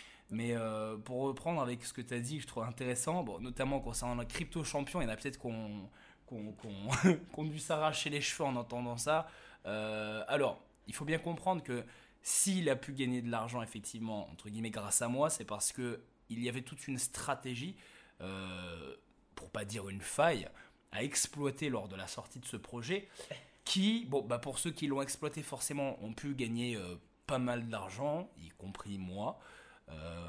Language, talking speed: French, 195 wpm